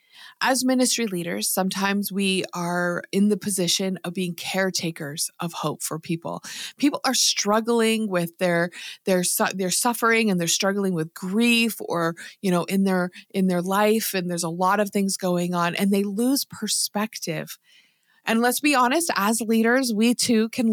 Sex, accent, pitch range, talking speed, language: female, American, 175-220 Hz, 170 wpm, English